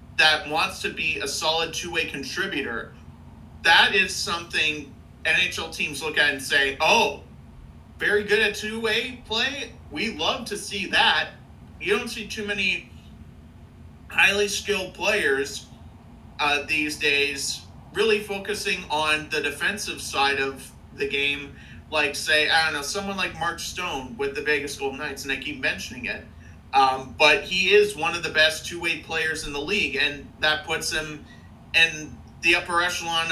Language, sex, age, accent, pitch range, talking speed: English, male, 30-49, American, 145-185 Hz, 160 wpm